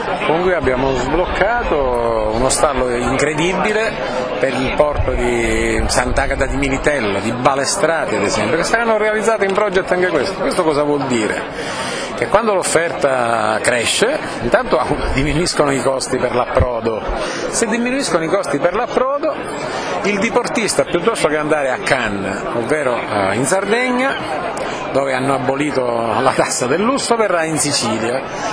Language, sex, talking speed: Italian, male, 135 wpm